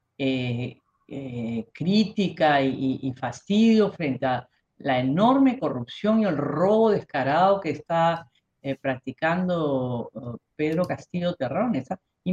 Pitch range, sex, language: 130-180 Hz, female, Spanish